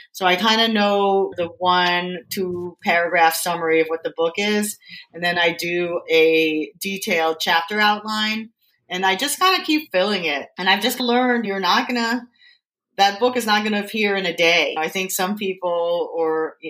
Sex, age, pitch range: female, 30-49, 165-215 Hz